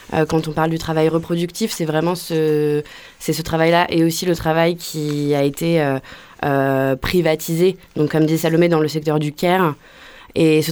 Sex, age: female, 20-39